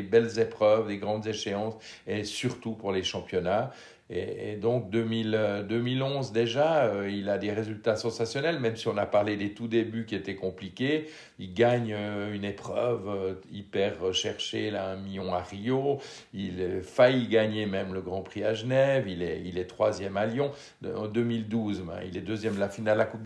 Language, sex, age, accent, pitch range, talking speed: French, male, 60-79, French, 100-120 Hz, 180 wpm